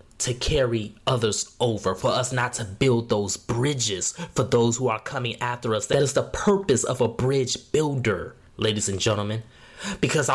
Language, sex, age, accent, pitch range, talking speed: English, male, 20-39, American, 110-165 Hz, 175 wpm